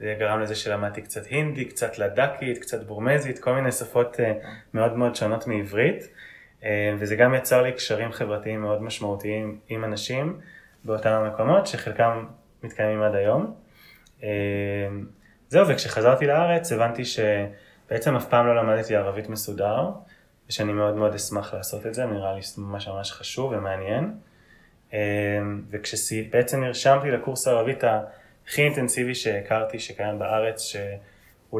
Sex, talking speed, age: male, 130 wpm, 20-39